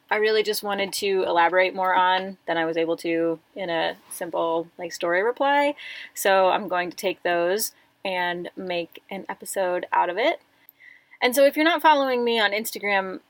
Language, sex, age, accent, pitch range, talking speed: English, female, 20-39, American, 185-240 Hz, 185 wpm